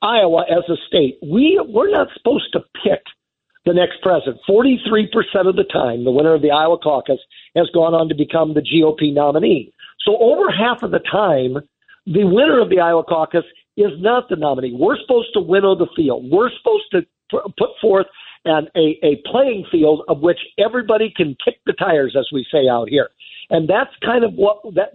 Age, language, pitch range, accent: 50-69, English, 155-210 Hz, American